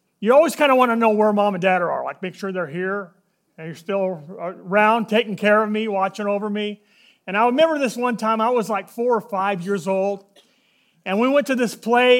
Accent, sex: American, male